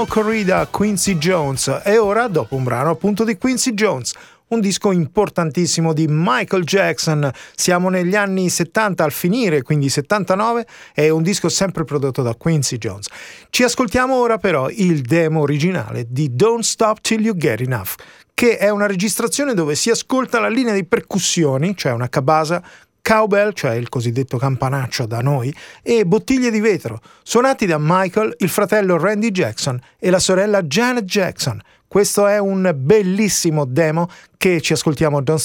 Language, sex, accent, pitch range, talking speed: Italian, male, native, 145-205 Hz, 160 wpm